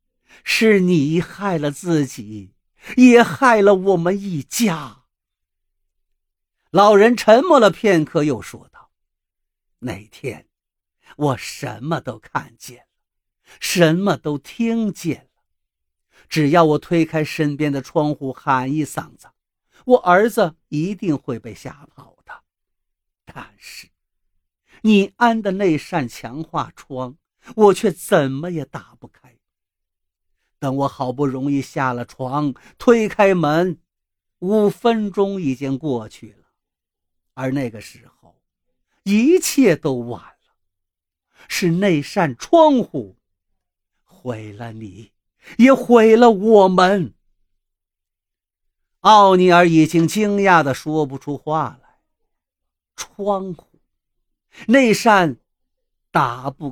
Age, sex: 50-69, male